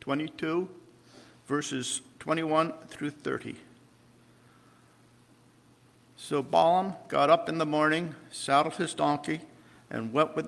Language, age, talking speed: English, 50-69, 115 wpm